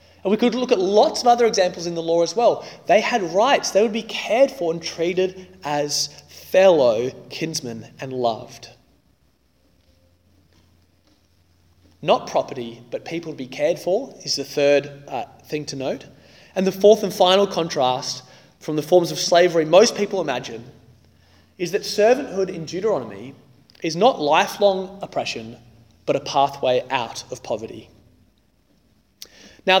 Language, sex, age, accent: English, male, 20-39, Australian